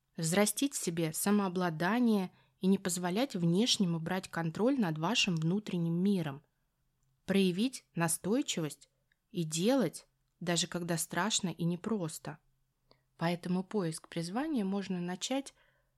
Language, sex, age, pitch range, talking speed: Russian, female, 20-39, 170-235 Hz, 105 wpm